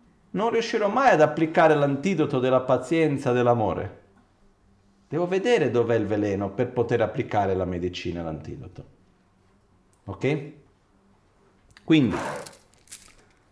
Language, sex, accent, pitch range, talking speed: Italian, male, native, 110-150 Hz, 100 wpm